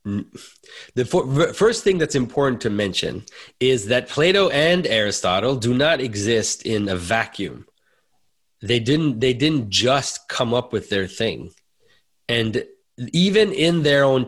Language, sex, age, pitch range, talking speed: English, male, 30-49, 120-150 Hz, 145 wpm